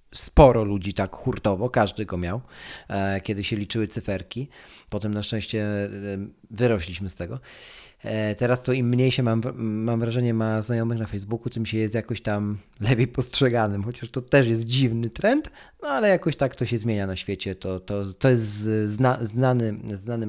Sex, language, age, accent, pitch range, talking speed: male, Polish, 40-59, native, 100-140 Hz, 165 wpm